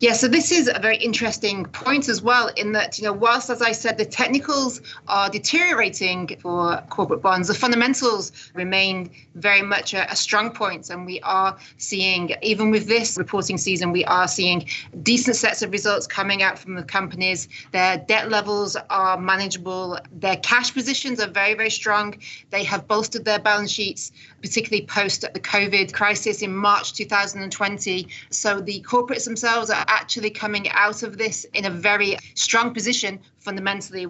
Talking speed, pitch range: 170 wpm, 190-230 Hz